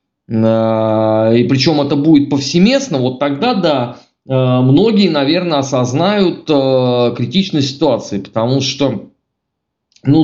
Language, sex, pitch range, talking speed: Russian, male, 125-170 Hz, 95 wpm